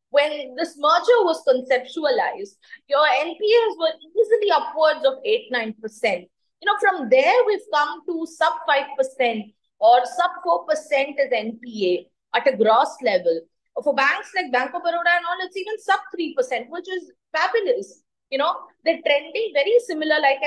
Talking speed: 145 wpm